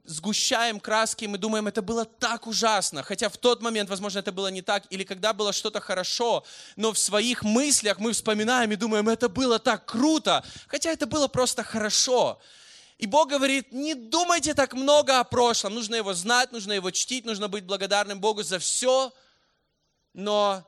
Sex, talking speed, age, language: male, 175 wpm, 20-39, Russian